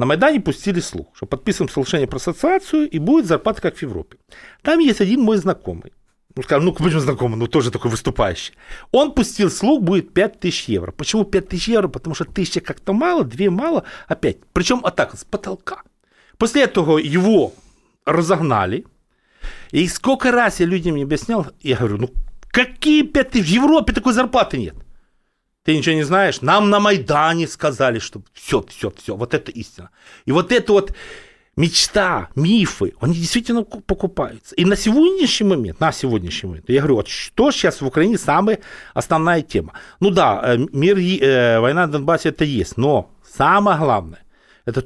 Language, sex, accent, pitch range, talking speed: Russian, male, native, 135-220 Hz, 165 wpm